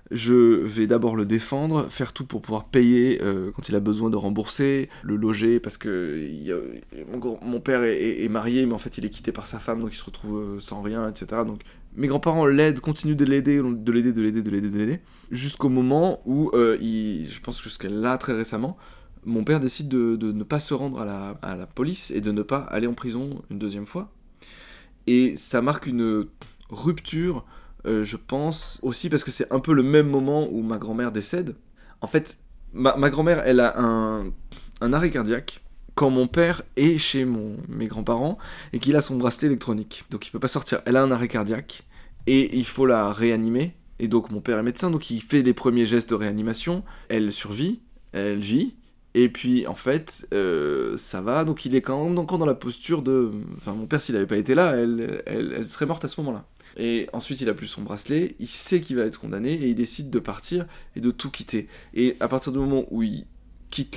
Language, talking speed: French, 225 wpm